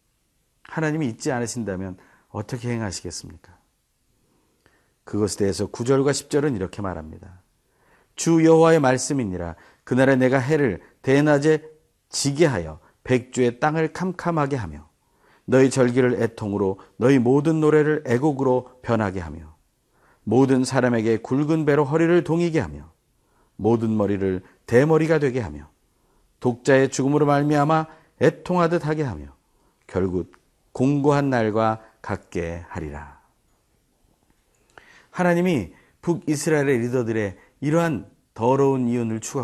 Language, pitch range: Korean, 105-150 Hz